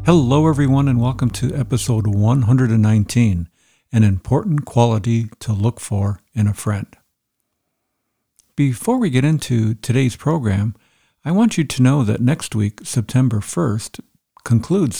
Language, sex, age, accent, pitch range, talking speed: English, male, 60-79, American, 105-130 Hz, 130 wpm